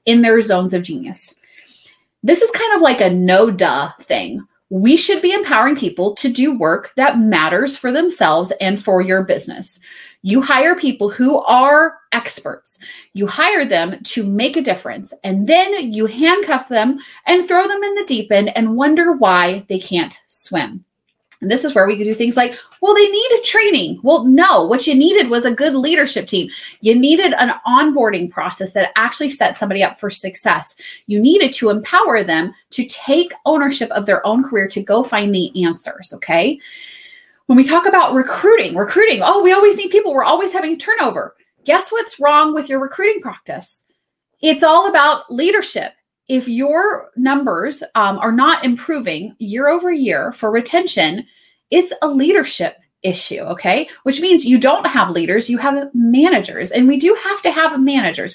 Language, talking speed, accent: English, 180 wpm, American